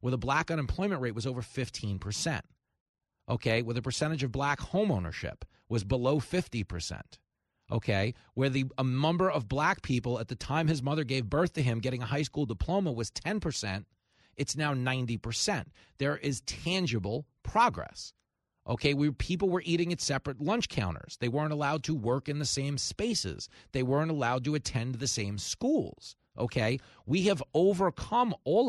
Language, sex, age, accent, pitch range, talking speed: English, male, 40-59, American, 115-155 Hz, 165 wpm